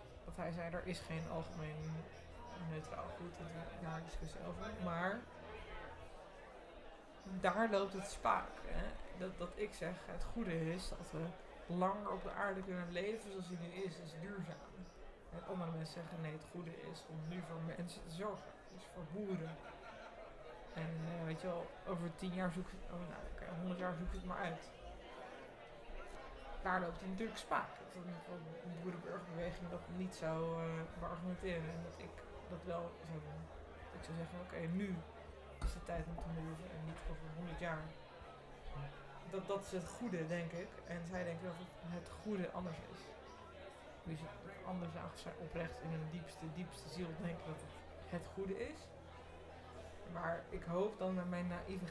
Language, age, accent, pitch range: Dutch, 20-39, Dutch, 160-185 Hz